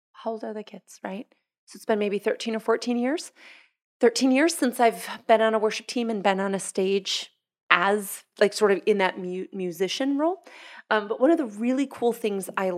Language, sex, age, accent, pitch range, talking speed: English, female, 30-49, American, 175-225 Hz, 210 wpm